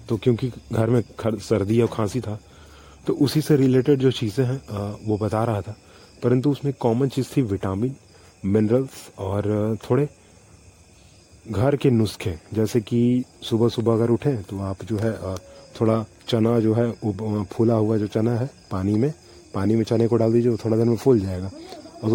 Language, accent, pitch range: Hindi, native, 105-125 Hz